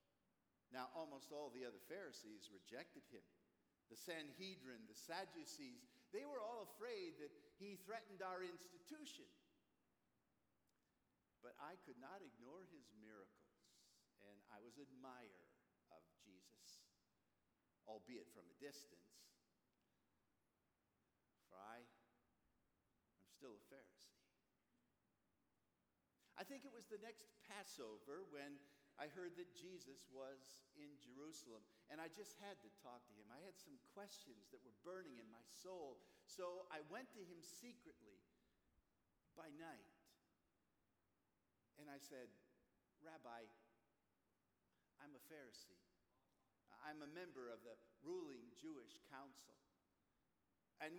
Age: 50-69